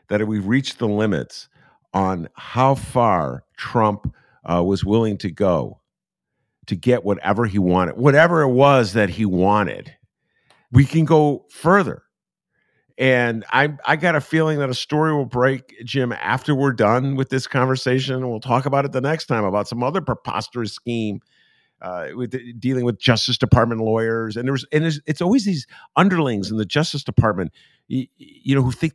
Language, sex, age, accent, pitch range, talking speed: English, male, 50-69, American, 110-140 Hz, 175 wpm